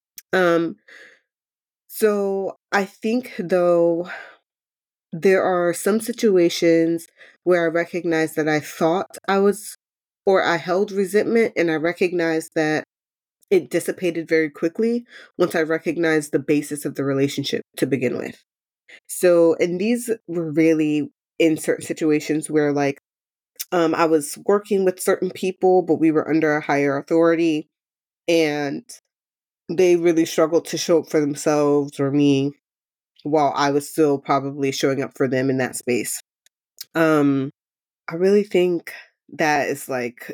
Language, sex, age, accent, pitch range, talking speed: English, female, 20-39, American, 150-175 Hz, 140 wpm